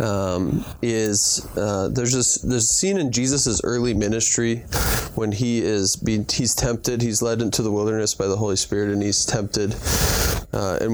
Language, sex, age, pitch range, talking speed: English, male, 20-39, 105-130 Hz, 175 wpm